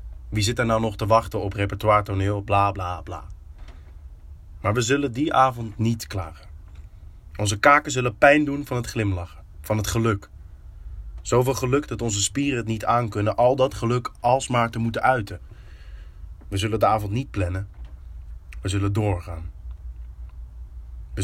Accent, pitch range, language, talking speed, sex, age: Dutch, 85-120 Hz, Dutch, 155 wpm, male, 20-39